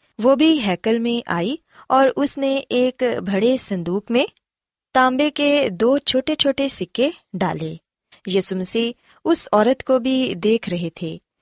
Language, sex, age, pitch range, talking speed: Urdu, female, 20-39, 185-275 Hz, 140 wpm